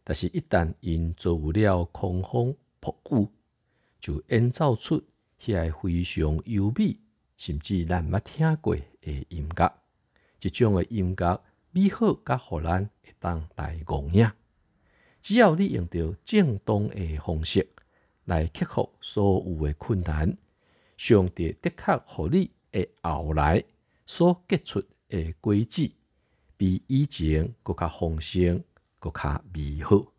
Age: 50-69